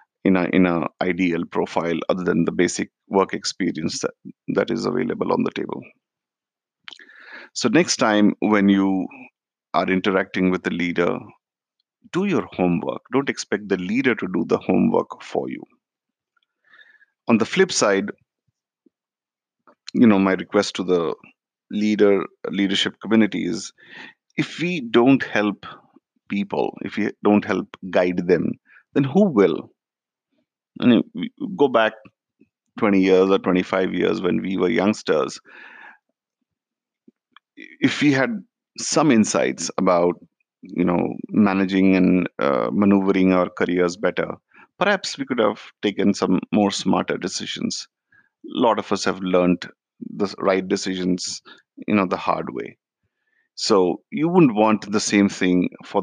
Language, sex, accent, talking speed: English, male, Indian, 140 wpm